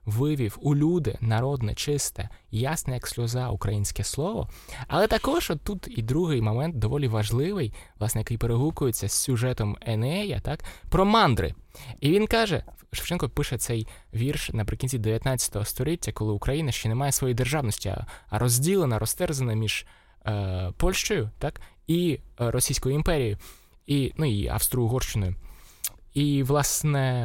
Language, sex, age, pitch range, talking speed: Ukrainian, male, 20-39, 110-145 Hz, 130 wpm